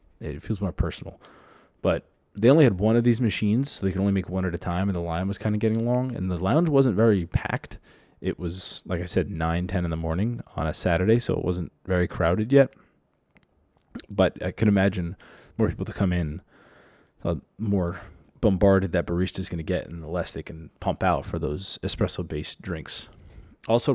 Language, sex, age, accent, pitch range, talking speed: English, male, 20-39, American, 85-110 Hz, 210 wpm